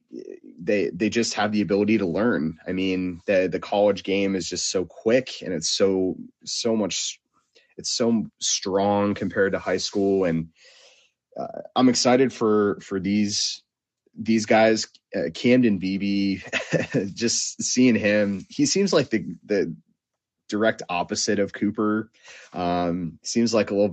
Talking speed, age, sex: 150 wpm, 30-49, male